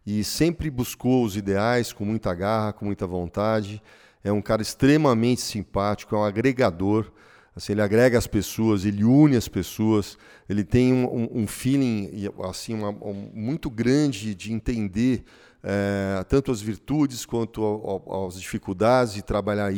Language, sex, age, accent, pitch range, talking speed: Portuguese, male, 40-59, Brazilian, 100-120 Hz, 155 wpm